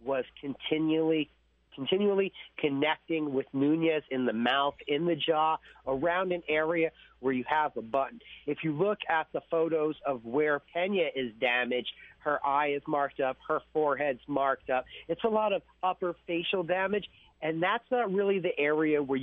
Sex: male